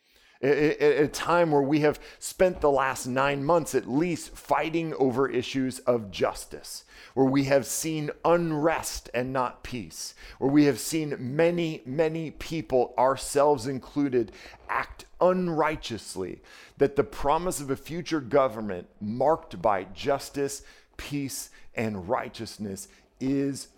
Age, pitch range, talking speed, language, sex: 40-59, 120-150 Hz, 125 wpm, English, male